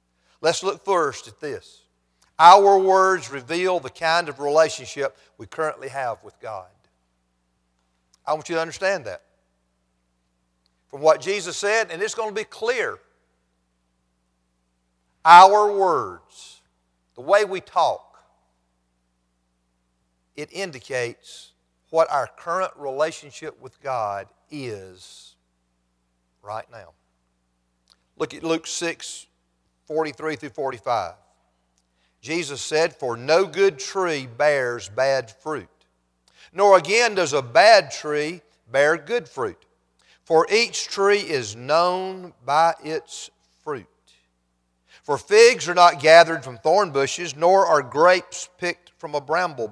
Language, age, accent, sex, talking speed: English, 50-69, American, male, 120 wpm